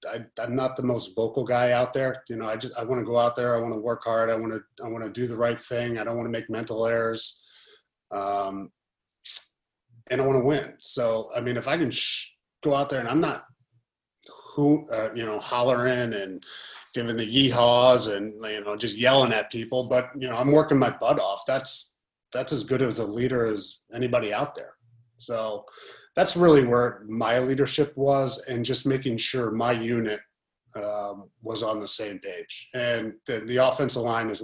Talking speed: 210 wpm